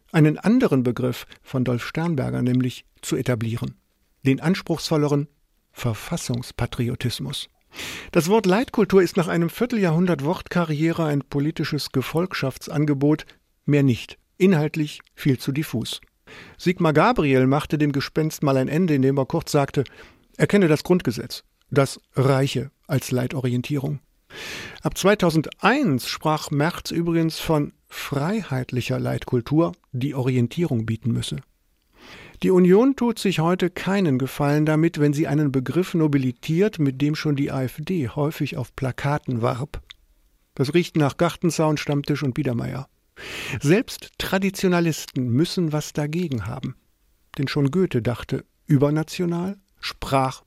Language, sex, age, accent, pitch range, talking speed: German, male, 50-69, German, 130-170 Hz, 120 wpm